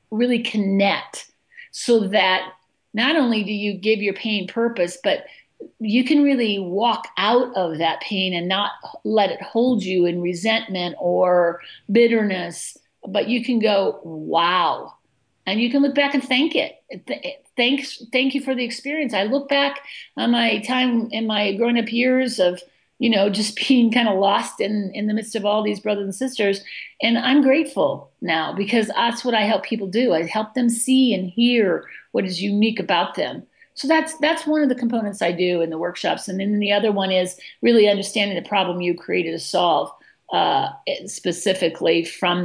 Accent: American